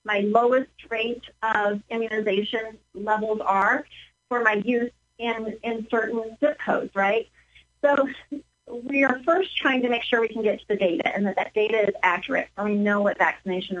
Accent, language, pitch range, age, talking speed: American, English, 205-270 Hz, 40-59, 185 wpm